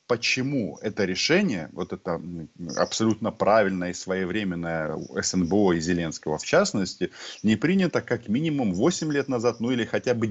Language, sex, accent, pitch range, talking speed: Russian, male, native, 90-125 Hz, 145 wpm